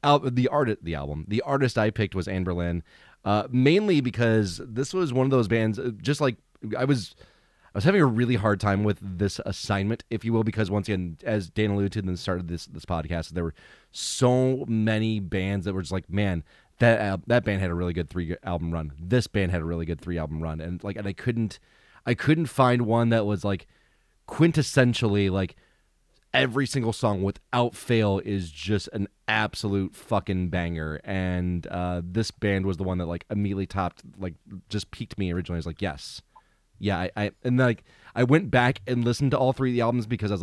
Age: 30-49